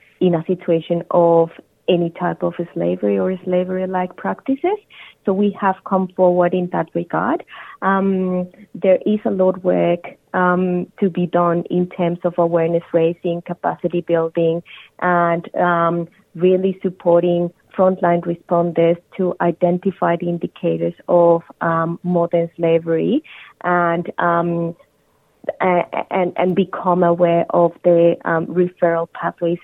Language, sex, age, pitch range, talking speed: English, female, 30-49, 170-180 Hz, 125 wpm